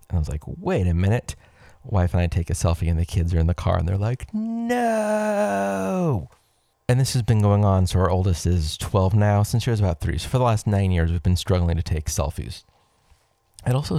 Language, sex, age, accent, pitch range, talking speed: English, male, 30-49, American, 85-105 Hz, 235 wpm